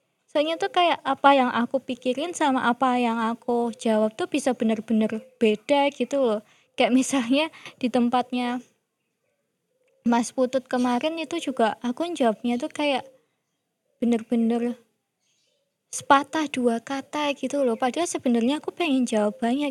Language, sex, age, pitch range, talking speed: Indonesian, female, 20-39, 225-265 Hz, 130 wpm